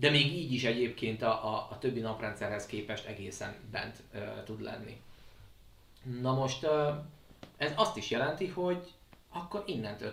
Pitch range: 110-150 Hz